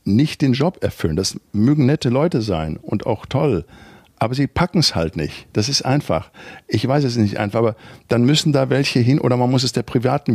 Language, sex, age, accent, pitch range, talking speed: German, male, 60-79, German, 100-130 Hz, 220 wpm